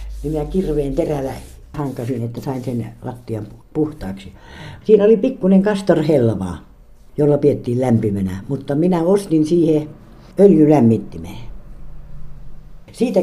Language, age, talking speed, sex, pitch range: Finnish, 60-79, 100 wpm, female, 120-200 Hz